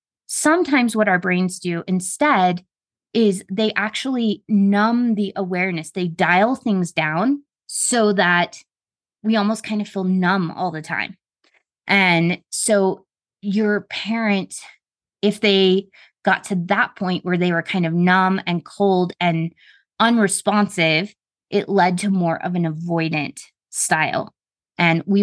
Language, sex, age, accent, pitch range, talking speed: English, female, 20-39, American, 180-215 Hz, 135 wpm